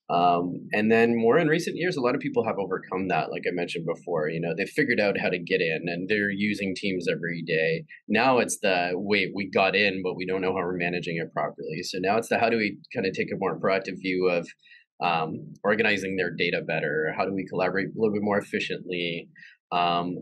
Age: 20-39